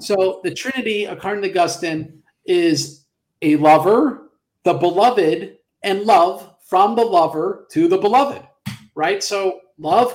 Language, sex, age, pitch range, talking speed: English, male, 40-59, 165-225 Hz, 130 wpm